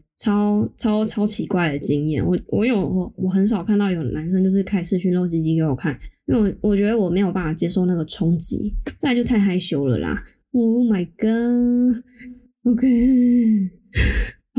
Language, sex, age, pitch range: Chinese, female, 10-29, 185-245 Hz